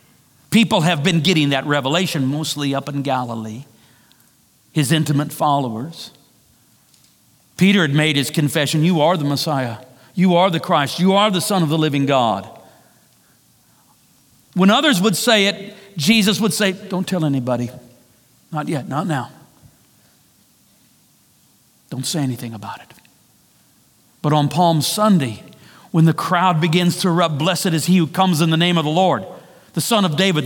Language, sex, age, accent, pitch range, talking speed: English, male, 50-69, American, 145-195 Hz, 155 wpm